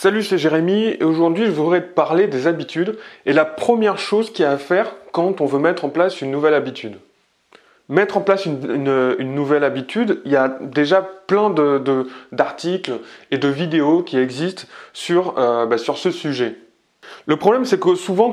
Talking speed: 185 wpm